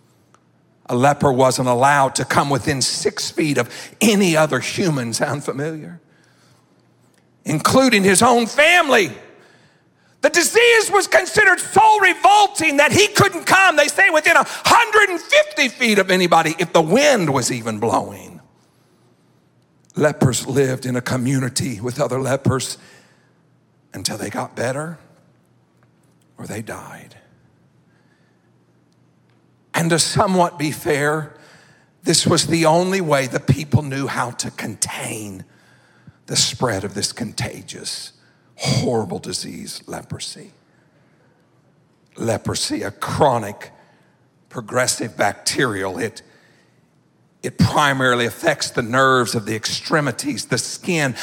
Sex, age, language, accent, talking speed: male, 50-69, English, American, 115 wpm